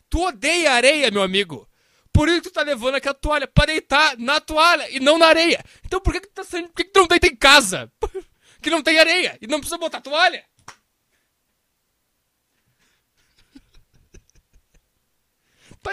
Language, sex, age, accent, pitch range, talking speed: English, male, 20-39, Brazilian, 270-340 Hz, 170 wpm